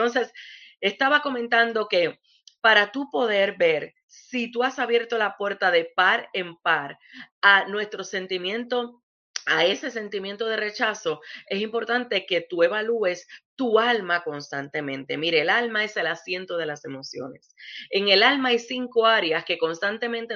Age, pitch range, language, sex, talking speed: 30-49, 185-245 Hz, English, female, 150 wpm